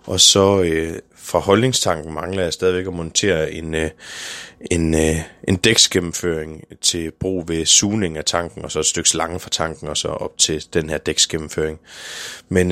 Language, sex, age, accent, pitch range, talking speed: Danish, male, 20-39, native, 85-110 Hz, 175 wpm